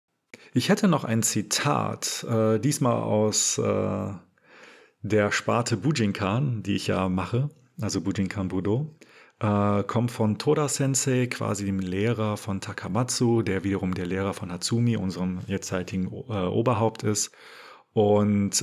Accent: German